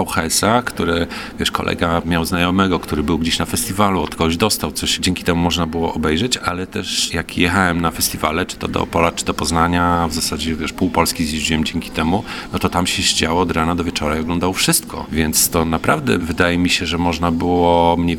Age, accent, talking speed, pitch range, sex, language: 40-59, native, 205 wpm, 85-100 Hz, male, Polish